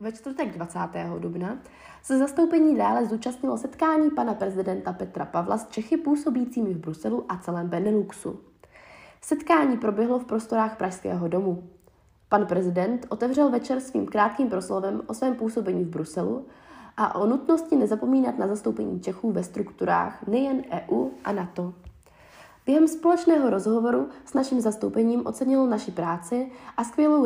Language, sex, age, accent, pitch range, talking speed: Czech, female, 20-39, native, 180-270 Hz, 140 wpm